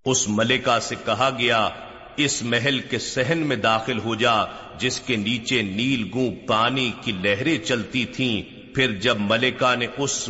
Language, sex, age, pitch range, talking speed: Urdu, male, 50-69, 115-130 Hz, 165 wpm